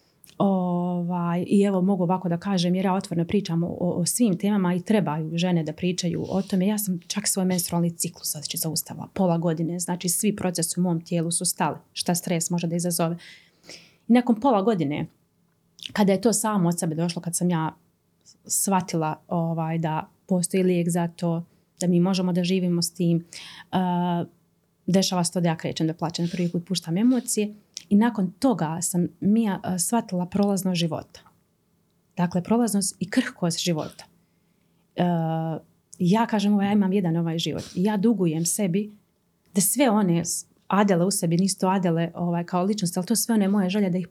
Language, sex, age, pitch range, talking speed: Croatian, female, 30-49, 170-200 Hz, 180 wpm